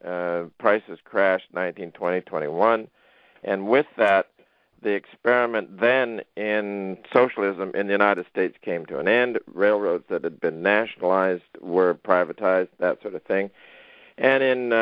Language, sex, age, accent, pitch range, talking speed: English, male, 50-69, American, 95-115 Hz, 135 wpm